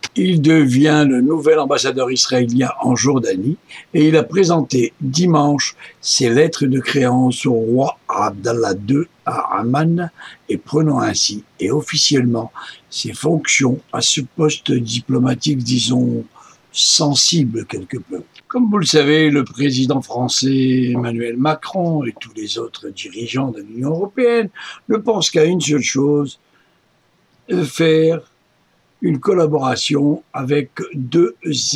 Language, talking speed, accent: French, 125 wpm, French